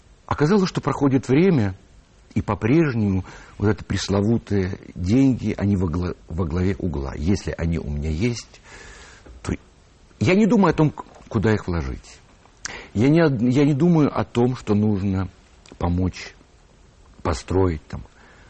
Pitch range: 90-125 Hz